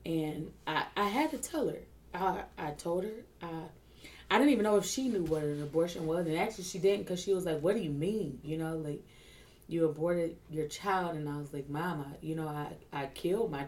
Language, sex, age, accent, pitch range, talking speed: English, female, 20-39, American, 150-175 Hz, 235 wpm